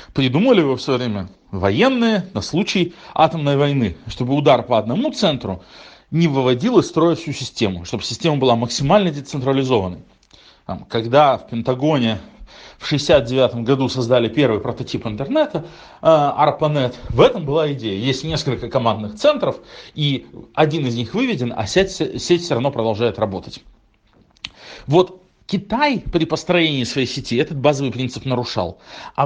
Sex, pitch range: male, 125-175 Hz